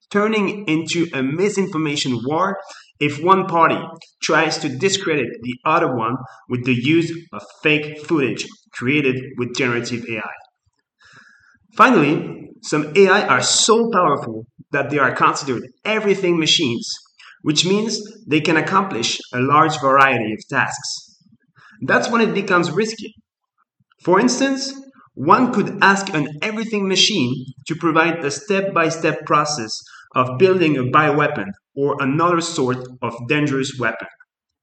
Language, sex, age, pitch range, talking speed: English, male, 30-49, 135-185 Hz, 130 wpm